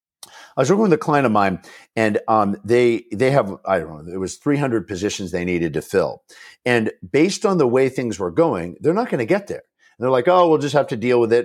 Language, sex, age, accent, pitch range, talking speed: English, male, 50-69, American, 115-190 Hz, 255 wpm